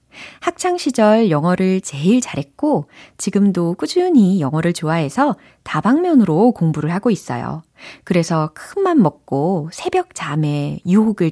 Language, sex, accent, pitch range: Korean, female, native, 155-220 Hz